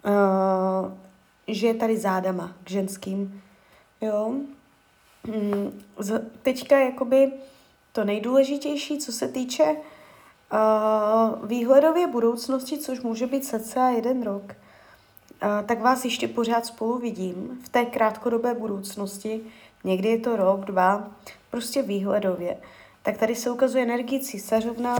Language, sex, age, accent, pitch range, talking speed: Czech, female, 20-39, native, 205-250 Hz, 110 wpm